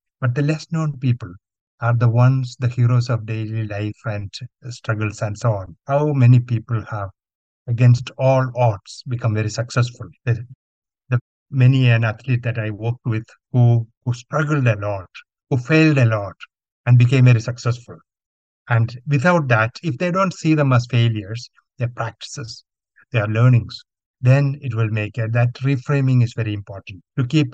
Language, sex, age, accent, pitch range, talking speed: English, male, 60-79, Indian, 115-135 Hz, 170 wpm